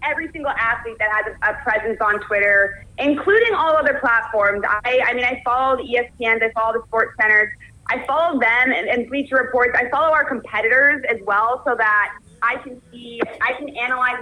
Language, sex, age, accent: English, female, 20-39, American